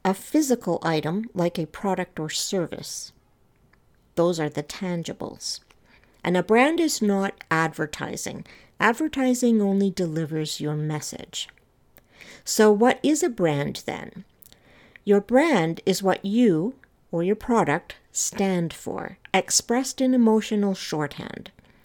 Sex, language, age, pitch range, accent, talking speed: female, English, 60-79, 170-240 Hz, American, 120 wpm